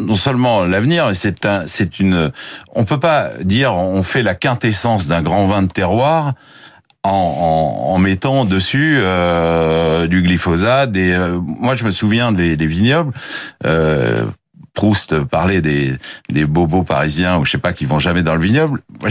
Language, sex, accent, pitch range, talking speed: French, male, French, 90-125 Hz, 165 wpm